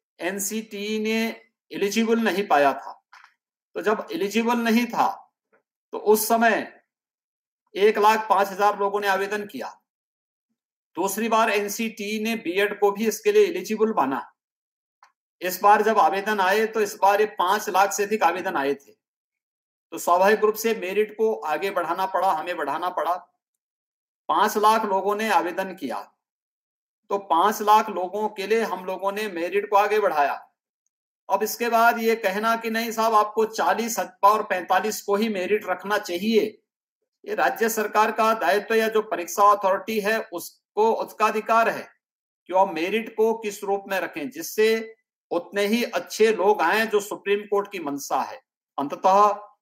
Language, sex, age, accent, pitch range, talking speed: Hindi, male, 50-69, native, 190-225 Hz, 160 wpm